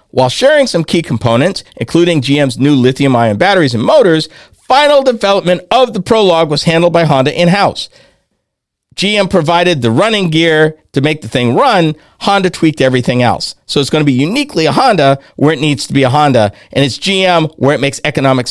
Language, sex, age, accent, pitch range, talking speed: English, male, 50-69, American, 115-150 Hz, 190 wpm